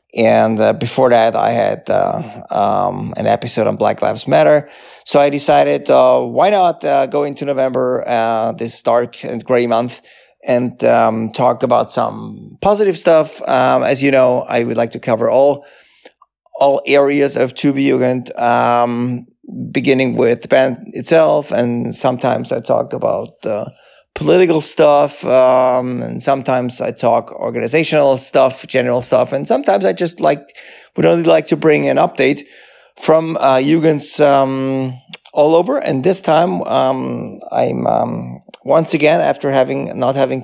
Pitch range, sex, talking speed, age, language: 120-145 Hz, male, 155 wpm, 30-49, English